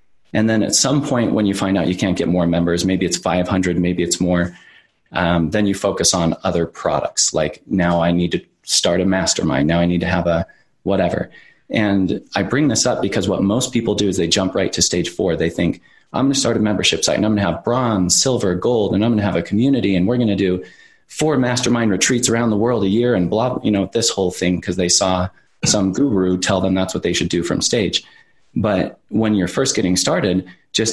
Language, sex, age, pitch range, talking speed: English, male, 30-49, 90-105 Hz, 240 wpm